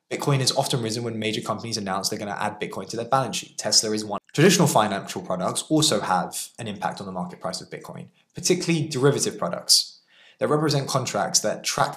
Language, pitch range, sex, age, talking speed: English, 105-145 Hz, male, 20-39, 195 wpm